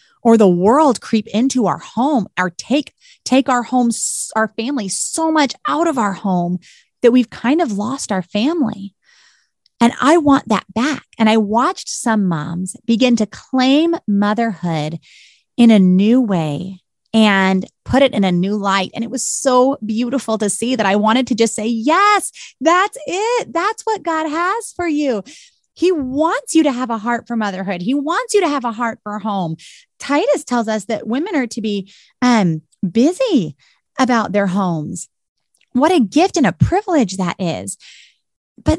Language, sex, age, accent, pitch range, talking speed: English, female, 30-49, American, 210-300 Hz, 175 wpm